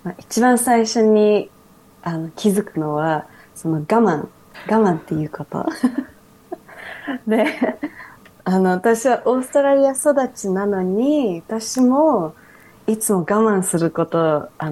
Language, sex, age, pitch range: Japanese, female, 20-39, 165-225 Hz